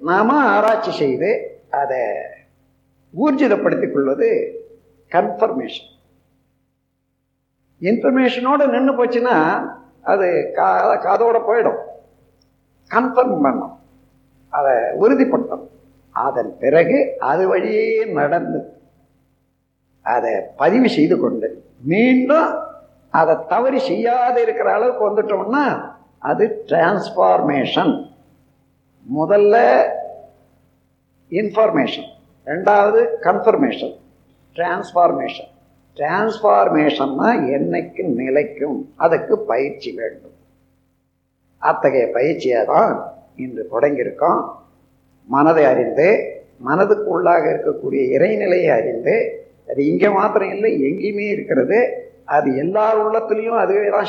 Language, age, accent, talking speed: Tamil, 50-69, native, 75 wpm